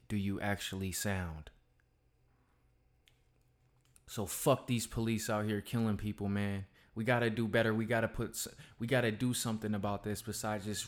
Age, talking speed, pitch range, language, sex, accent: 20-39, 155 wpm, 100-115 Hz, English, male, American